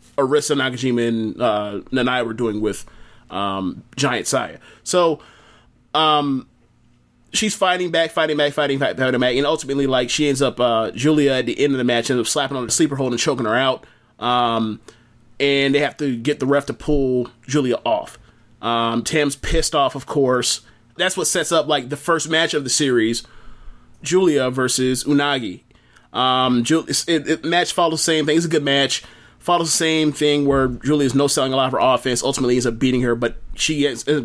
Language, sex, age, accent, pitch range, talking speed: English, male, 30-49, American, 125-150 Hz, 200 wpm